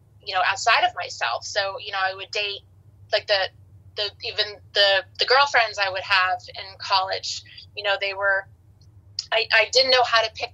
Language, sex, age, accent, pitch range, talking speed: English, female, 20-39, American, 180-215 Hz, 195 wpm